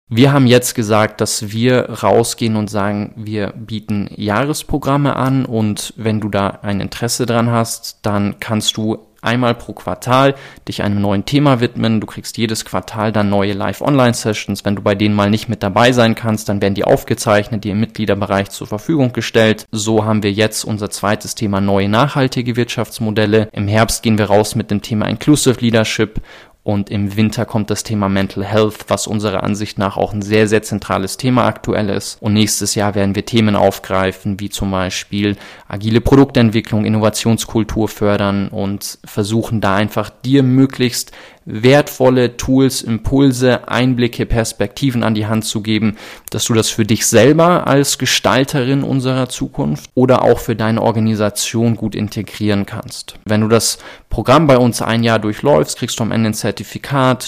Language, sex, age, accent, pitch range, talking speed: German, male, 20-39, German, 105-120 Hz, 170 wpm